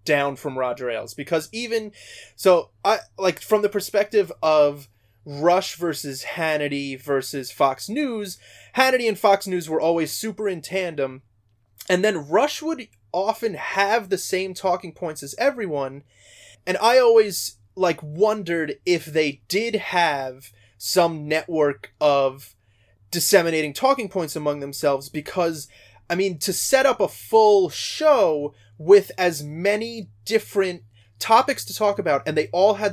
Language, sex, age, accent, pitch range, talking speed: English, male, 20-39, American, 135-200 Hz, 140 wpm